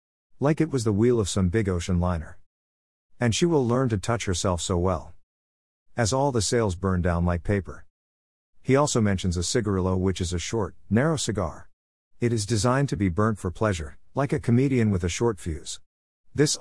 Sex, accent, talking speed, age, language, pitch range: male, American, 195 wpm, 50-69, English, 85-115 Hz